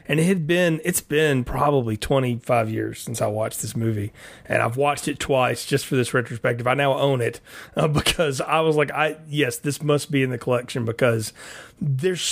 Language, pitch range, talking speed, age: English, 135-170 Hz, 205 wpm, 30-49